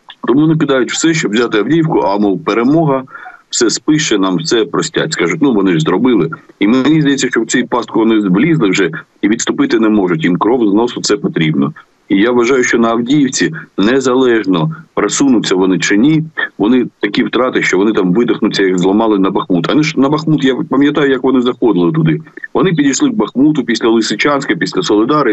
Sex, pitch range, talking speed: male, 105-160 Hz, 185 wpm